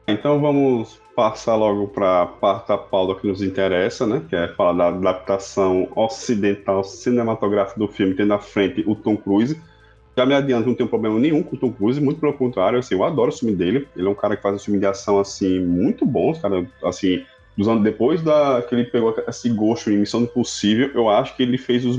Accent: Brazilian